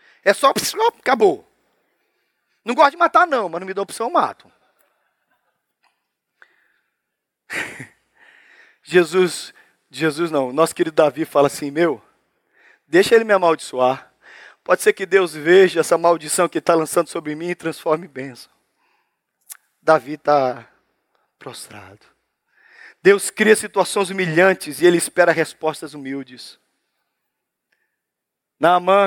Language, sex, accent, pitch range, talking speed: Portuguese, male, Brazilian, 180-255 Hz, 120 wpm